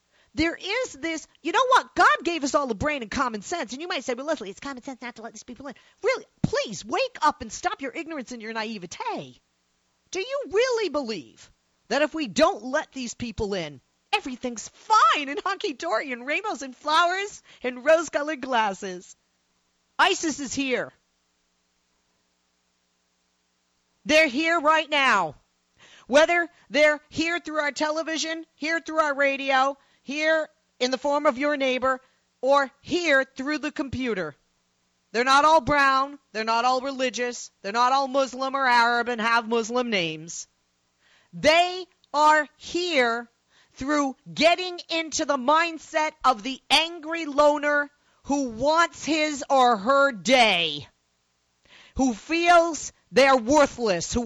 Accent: American